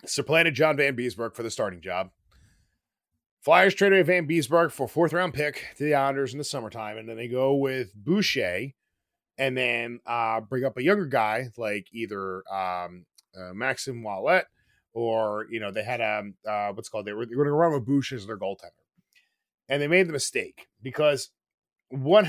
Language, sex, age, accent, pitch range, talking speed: English, male, 30-49, American, 115-165 Hz, 190 wpm